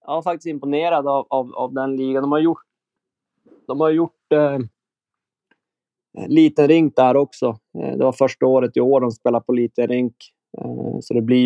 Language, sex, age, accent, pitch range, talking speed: Swedish, male, 20-39, native, 115-135 Hz, 190 wpm